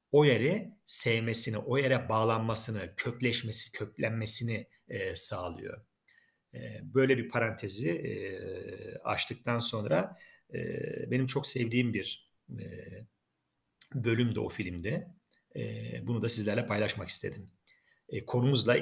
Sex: male